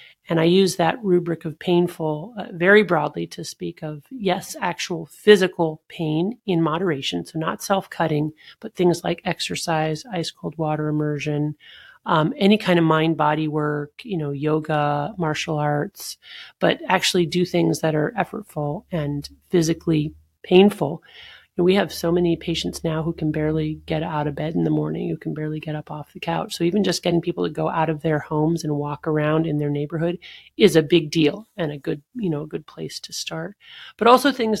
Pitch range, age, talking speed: 155-175 Hz, 30-49, 185 wpm